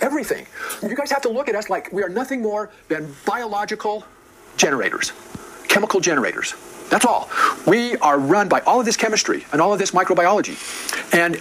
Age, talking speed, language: 50-69, 180 wpm, English